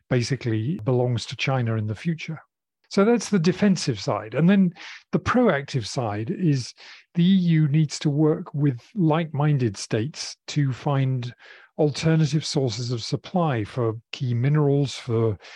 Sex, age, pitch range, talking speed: male, 40-59, 125-165 Hz, 140 wpm